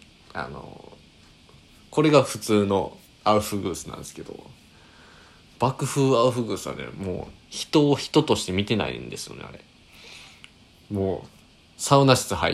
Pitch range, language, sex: 90-135 Hz, Japanese, male